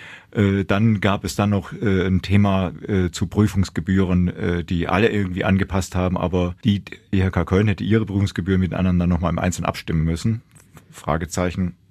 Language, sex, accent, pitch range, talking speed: German, male, German, 90-105 Hz, 150 wpm